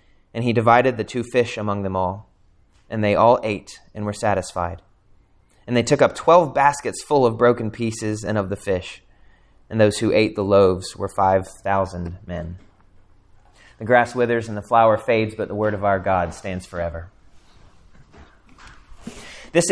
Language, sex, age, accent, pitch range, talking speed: English, male, 30-49, American, 100-130 Hz, 170 wpm